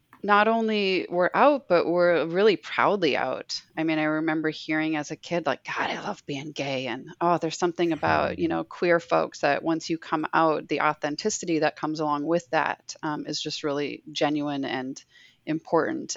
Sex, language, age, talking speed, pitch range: female, English, 30-49, 190 wpm, 145-170 Hz